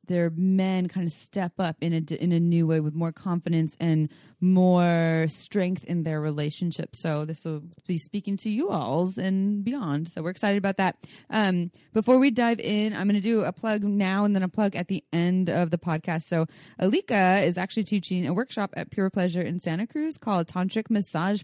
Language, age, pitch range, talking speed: English, 20-39, 160-190 Hz, 205 wpm